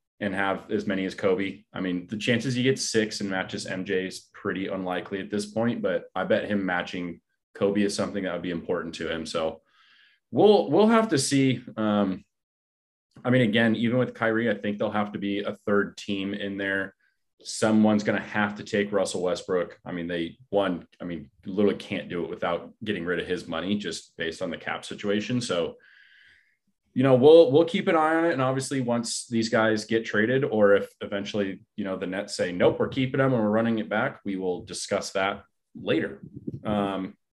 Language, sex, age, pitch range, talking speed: English, male, 20-39, 100-130 Hz, 210 wpm